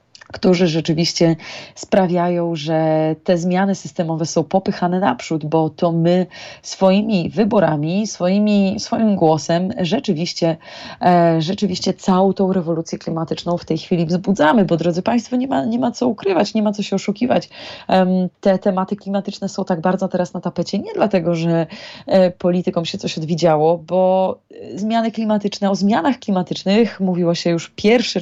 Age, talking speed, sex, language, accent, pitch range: 20-39, 145 wpm, female, Polish, native, 170-200 Hz